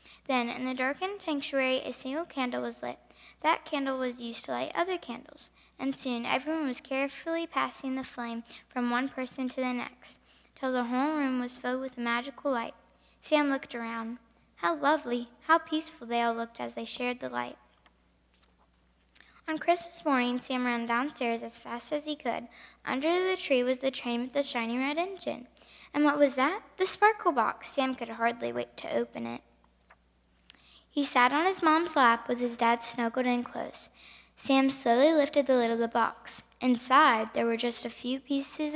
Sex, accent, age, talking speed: female, American, 10-29, 185 wpm